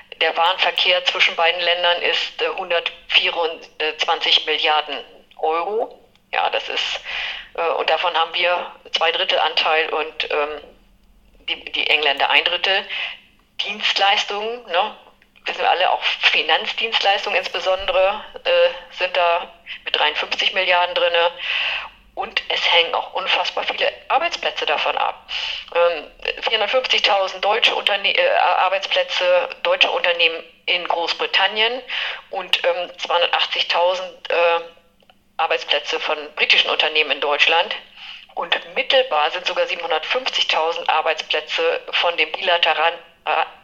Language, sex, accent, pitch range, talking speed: German, female, German, 170-205 Hz, 100 wpm